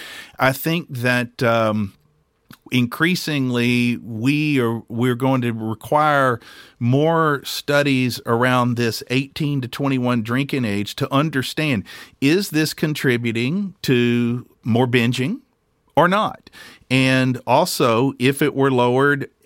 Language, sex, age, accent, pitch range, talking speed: English, male, 50-69, American, 115-135 Hz, 110 wpm